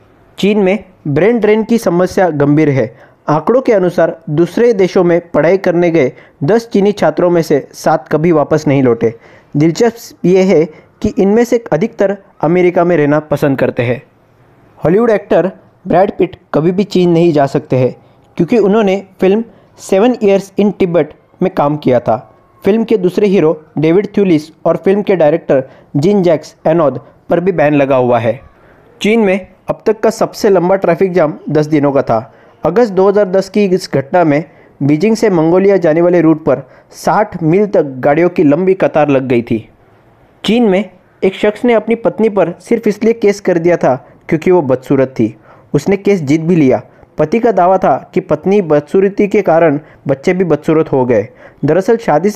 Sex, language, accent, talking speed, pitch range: male, Hindi, native, 180 wpm, 150-200 Hz